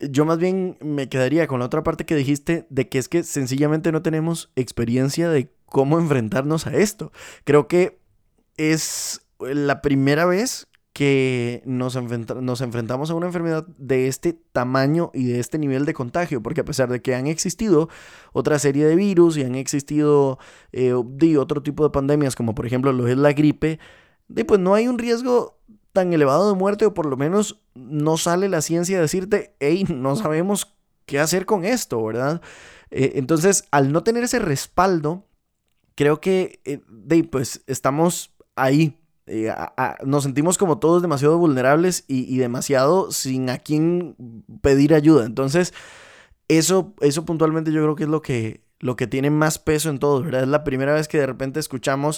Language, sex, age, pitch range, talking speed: Spanish, male, 20-39, 135-170 Hz, 180 wpm